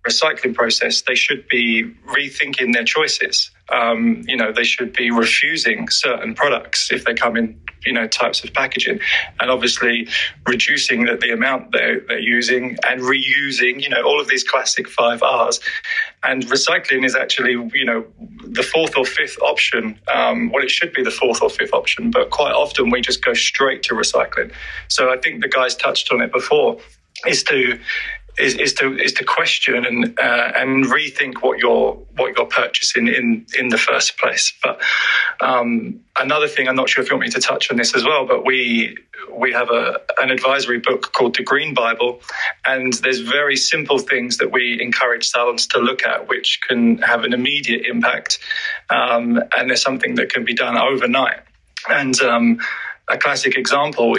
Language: English